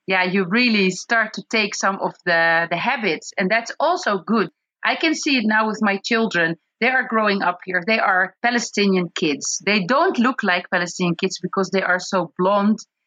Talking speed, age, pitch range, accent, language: 200 wpm, 30-49, 185-245 Hz, Dutch, English